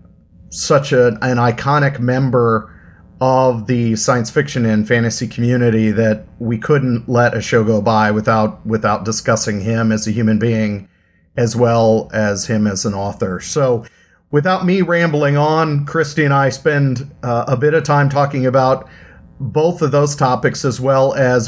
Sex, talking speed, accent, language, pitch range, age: male, 160 wpm, American, English, 100-130 Hz, 40-59